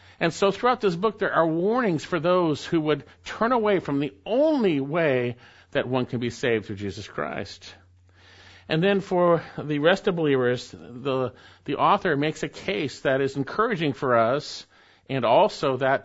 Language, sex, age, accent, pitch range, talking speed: English, male, 50-69, American, 130-185 Hz, 175 wpm